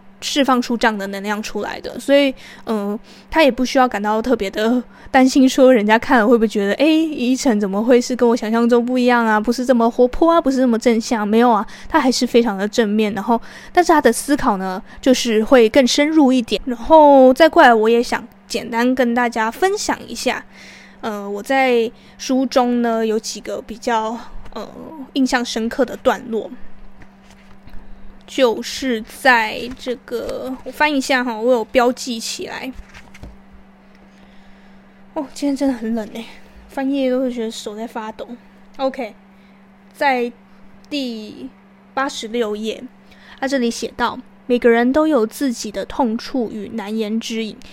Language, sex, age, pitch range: Chinese, female, 20-39, 220-260 Hz